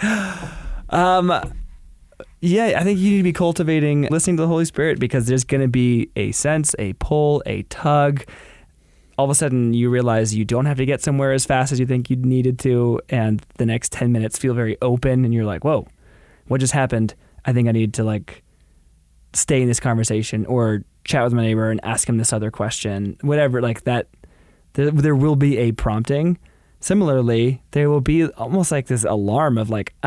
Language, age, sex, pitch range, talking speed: English, 20-39, male, 110-140 Hz, 200 wpm